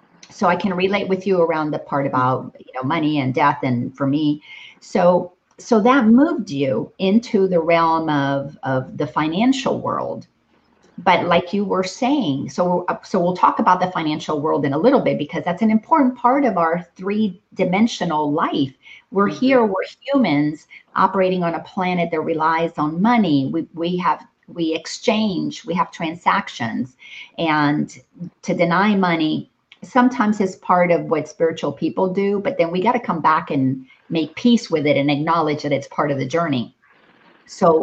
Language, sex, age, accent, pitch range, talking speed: English, female, 40-59, American, 155-210 Hz, 175 wpm